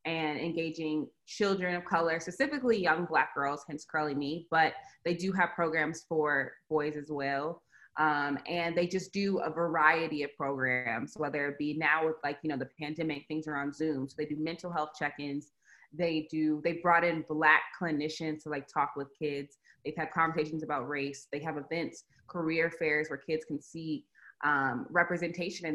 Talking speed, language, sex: 185 wpm, English, female